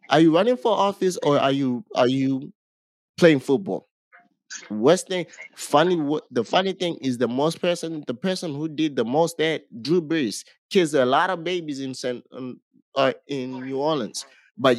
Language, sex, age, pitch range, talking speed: English, male, 20-39, 130-170 Hz, 165 wpm